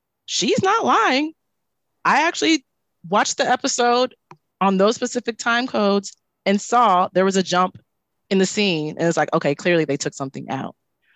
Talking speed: 165 wpm